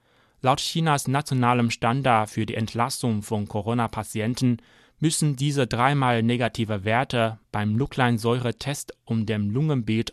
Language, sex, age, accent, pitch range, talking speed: German, male, 30-49, German, 115-135 Hz, 115 wpm